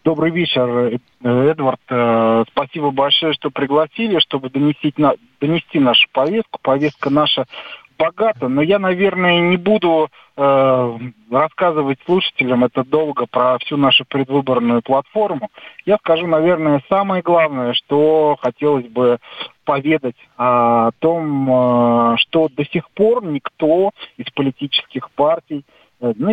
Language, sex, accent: Russian, male, native